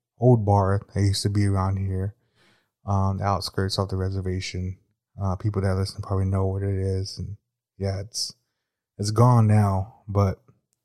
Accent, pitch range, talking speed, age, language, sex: American, 100-120 Hz, 175 wpm, 20-39, English, male